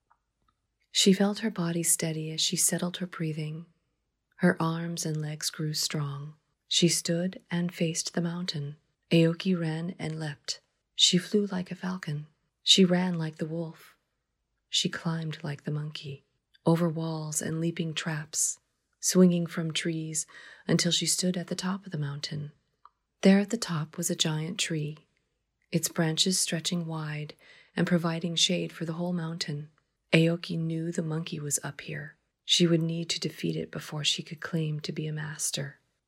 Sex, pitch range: female, 155-180 Hz